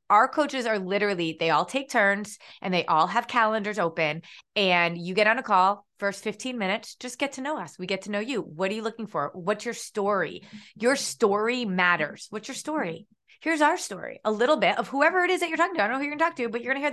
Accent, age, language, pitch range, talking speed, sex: American, 30-49, English, 190-255 Hz, 265 wpm, female